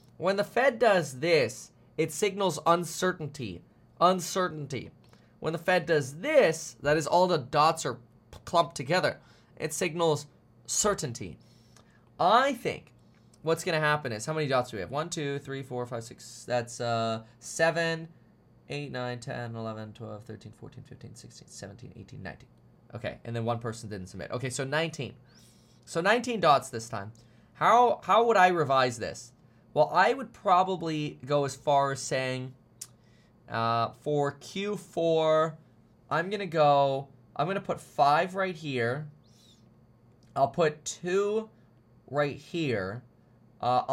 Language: English